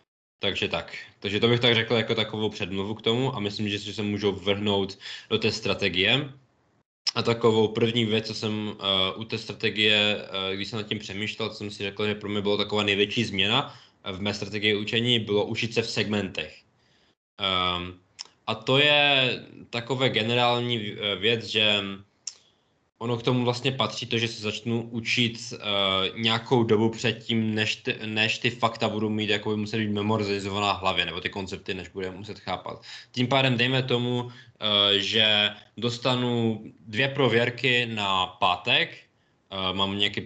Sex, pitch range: male, 100-120 Hz